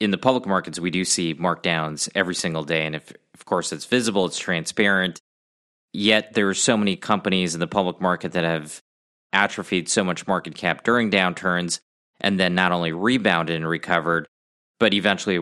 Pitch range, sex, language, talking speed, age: 85-95 Hz, male, English, 180 wpm, 20-39